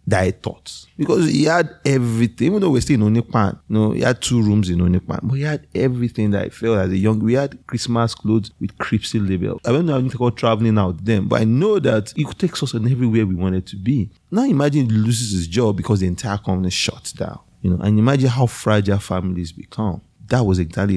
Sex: male